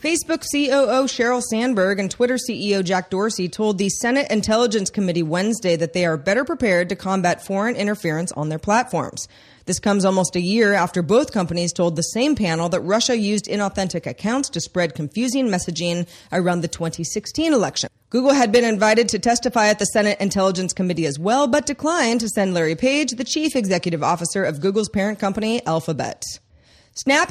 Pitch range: 180-240 Hz